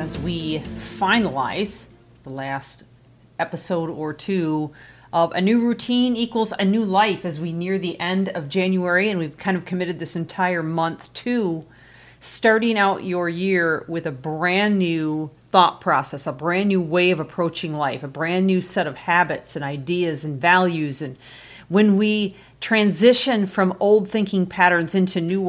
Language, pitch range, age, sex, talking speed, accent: English, 155-195 Hz, 40-59, female, 160 wpm, American